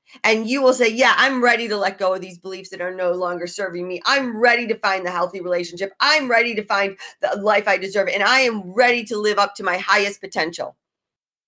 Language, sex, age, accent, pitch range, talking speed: English, female, 40-59, American, 175-220 Hz, 235 wpm